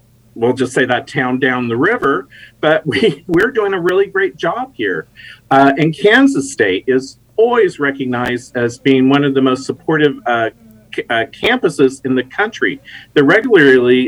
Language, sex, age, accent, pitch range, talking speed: English, male, 40-59, American, 125-185 Hz, 160 wpm